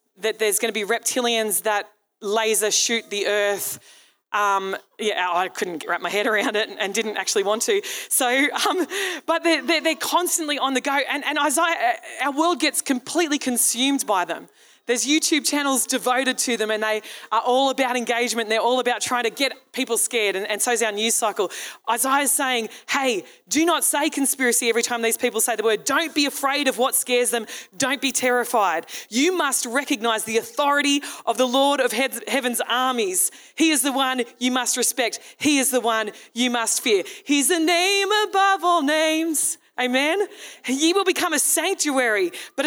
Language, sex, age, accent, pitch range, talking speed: English, female, 20-39, Australian, 235-290 Hz, 190 wpm